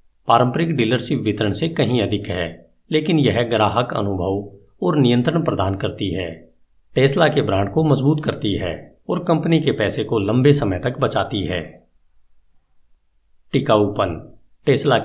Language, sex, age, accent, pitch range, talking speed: Hindi, male, 50-69, native, 95-140 Hz, 140 wpm